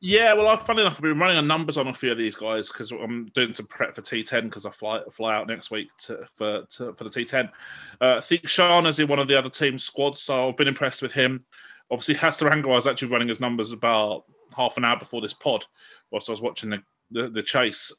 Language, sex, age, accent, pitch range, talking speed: English, male, 30-49, British, 110-150 Hz, 255 wpm